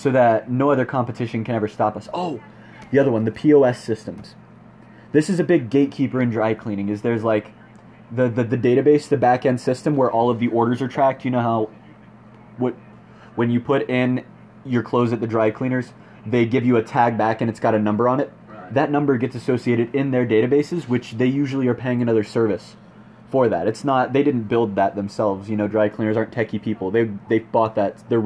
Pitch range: 110-125 Hz